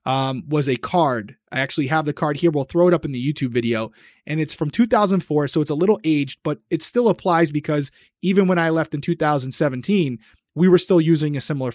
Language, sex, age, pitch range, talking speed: English, male, 30-49, 140-175 Hz, 225 wpm